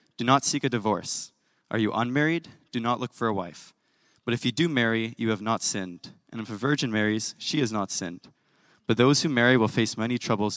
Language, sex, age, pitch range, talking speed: English, male, 20-39, 105-125 Hz, 225 wpm